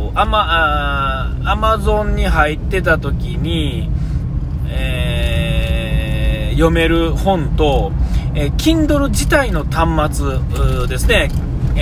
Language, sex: Japanese, male